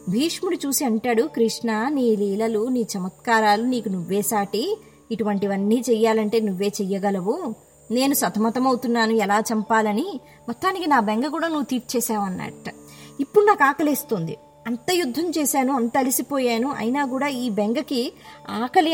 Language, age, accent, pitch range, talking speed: Telugu, 20-39, native, 215-280 Hz, 120 wpm